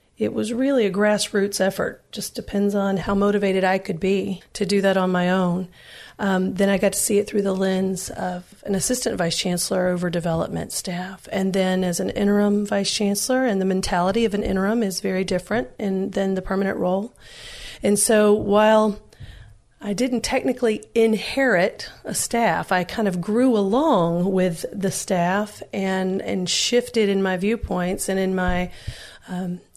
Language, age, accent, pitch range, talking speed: English, 40-59, American, 190-220 Hz, 170 wpm